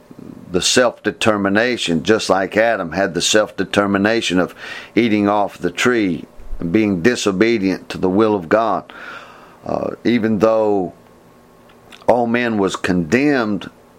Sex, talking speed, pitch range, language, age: male, 120 wpm, 95-110 Hz, English, 50-69